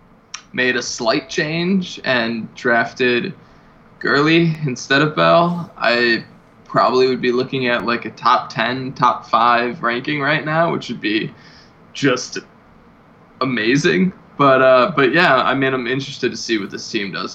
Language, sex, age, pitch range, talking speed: English, male, 20-39, 115-145 Hz, 150 wpm